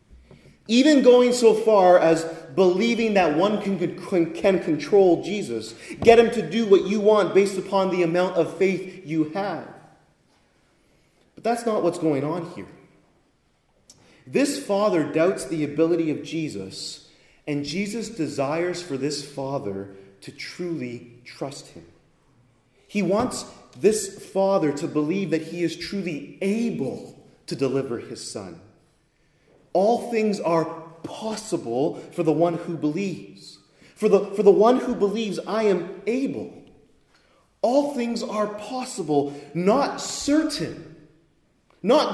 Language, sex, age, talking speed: English, male, 30-49, 130 wpm